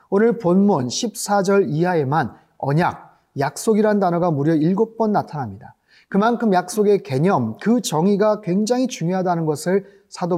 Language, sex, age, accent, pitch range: Korean, male, 30-49, native, 170-215 Hz